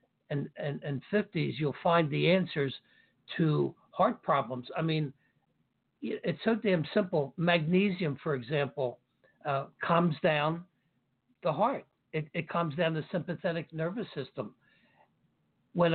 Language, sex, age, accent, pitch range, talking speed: English, male, 60-79, American, 145-180 Hz, 130 wpm